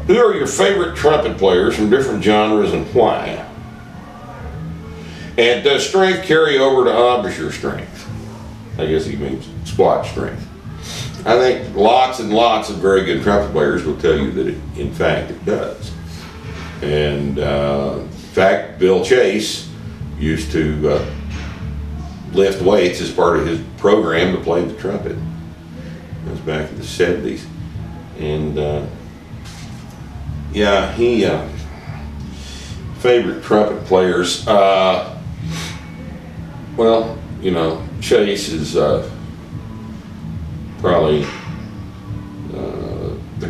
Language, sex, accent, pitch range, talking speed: English, male, American, 75-100 Hz, 115 wpm